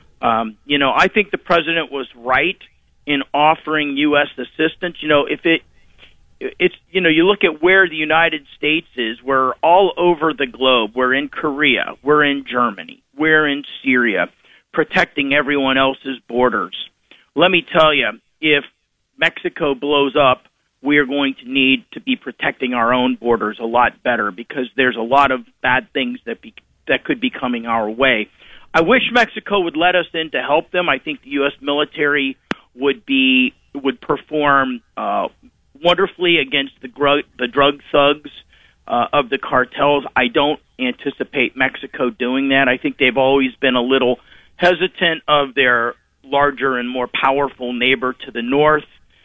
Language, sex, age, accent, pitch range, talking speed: English, male, 40-59, American, 125-155 Hz, 170 wpm